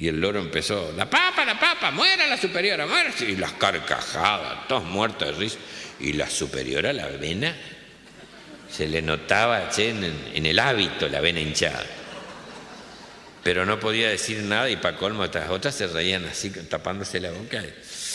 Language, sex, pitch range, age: Spanish, male, 80-130 Hz, 60-79